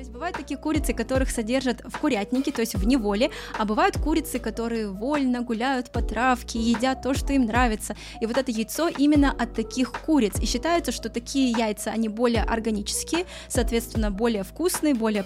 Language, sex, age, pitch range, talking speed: Russian, female, 20-39, 225-275 Hz, 175 wpm